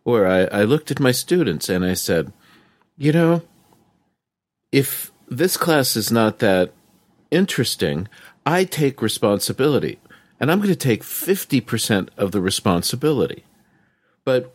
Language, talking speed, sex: English, 130 wpm, male